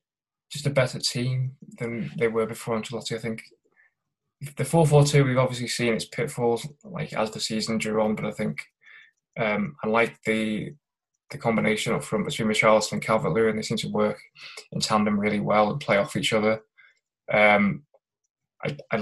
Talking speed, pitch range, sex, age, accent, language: 170 wpm, 110-145 Hz, male, 20-39, British, English